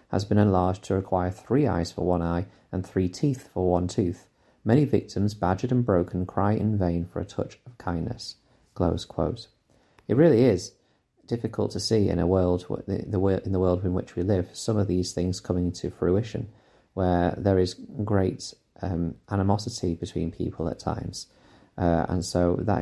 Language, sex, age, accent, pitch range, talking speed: English, male, 30-49, British, 85-105 Hz, 180 wpm